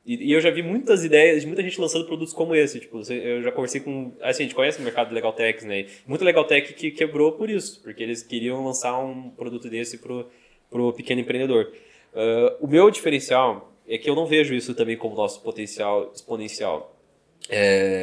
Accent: Brazilian